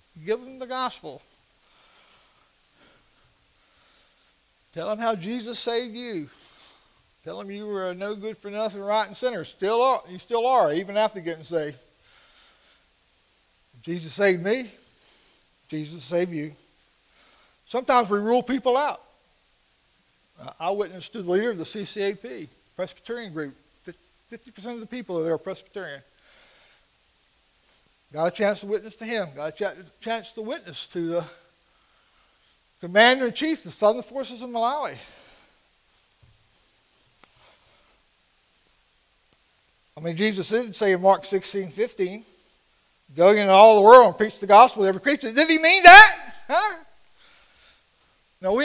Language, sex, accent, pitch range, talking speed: English, male, American, 170-235 Hz, 135 wpm